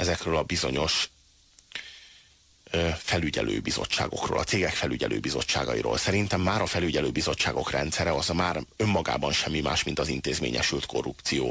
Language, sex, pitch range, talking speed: Hungarian, male, 80-110 Hz, 115 wpm